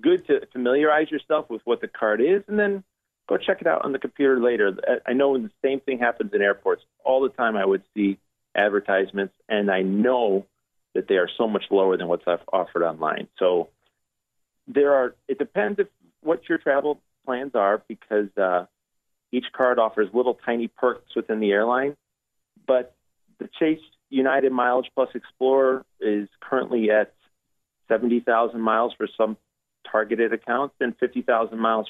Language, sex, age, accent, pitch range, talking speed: English, male, 30-49, American, 105-130 Hz, 165 wpm